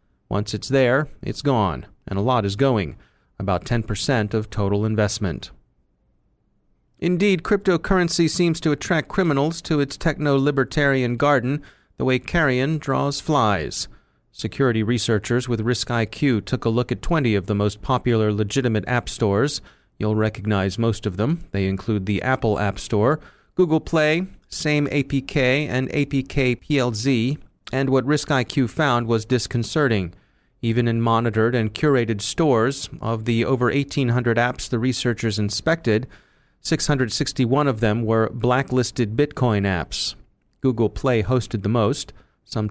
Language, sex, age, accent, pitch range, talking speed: English, male, 30-49, American, 110-140 Hz, 140 wpm